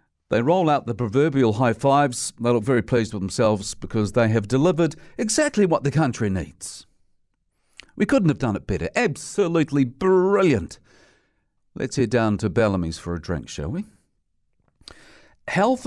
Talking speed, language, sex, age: 155 wpm, English, male, 50-69